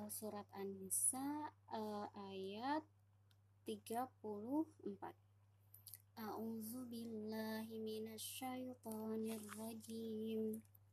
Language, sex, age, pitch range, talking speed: Indonesian, male, 20-39, 220-240 Hz, 55 wpm